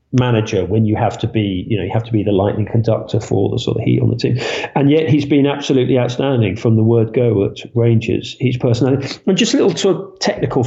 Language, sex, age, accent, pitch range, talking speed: English, male, 40-59, British, 110-140 Hz, 245 wpm